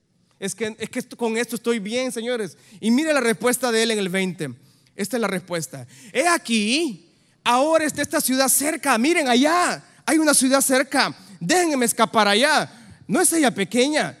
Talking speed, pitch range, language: 175 wpm, 175-220 Hz, Spanish